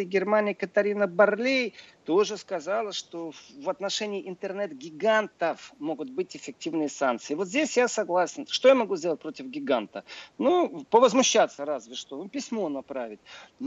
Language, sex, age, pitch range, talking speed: Russian, male, 40-59, 160-220 Hz, 125 wpm